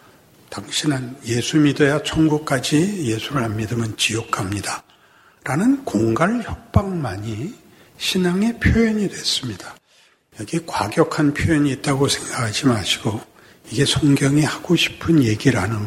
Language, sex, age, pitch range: Korean, male, 60-79, 120-190 Hz